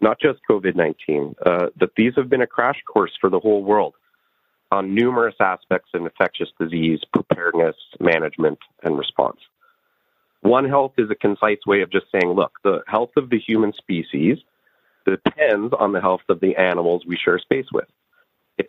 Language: English